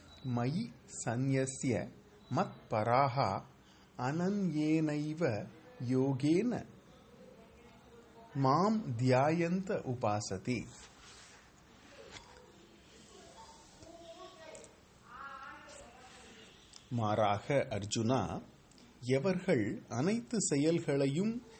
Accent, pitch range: native, 115-180 Hz